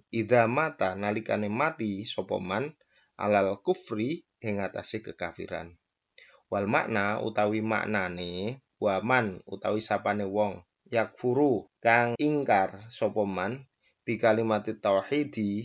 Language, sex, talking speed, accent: Indonesian, male, 90 wpm, native